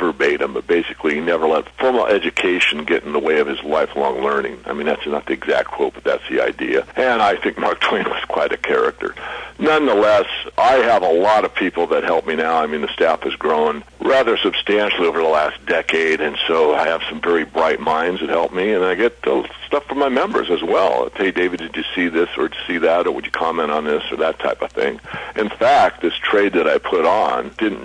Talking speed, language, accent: 240 wpm, English, American